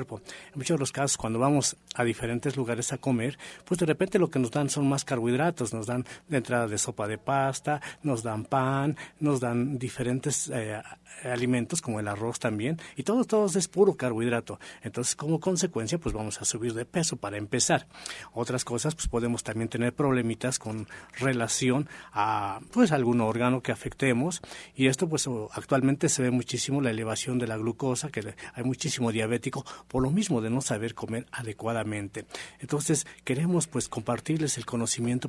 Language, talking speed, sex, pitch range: Spanish, 175 wpm, male, 115-145 Hz